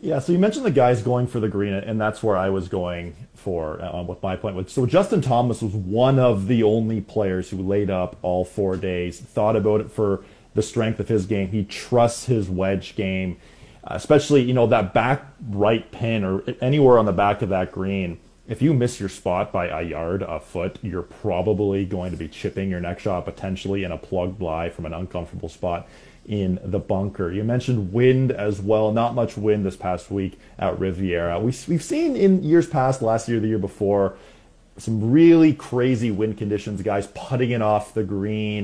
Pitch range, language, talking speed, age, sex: 95-125 Hz, English, 200 wpm, 30-49, male